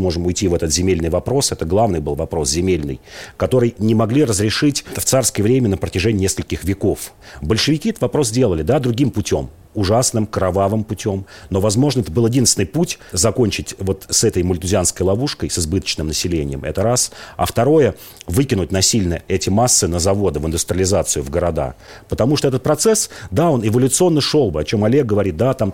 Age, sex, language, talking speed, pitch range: 40-59, male, Russian, 175 wpm, 90-120 Hz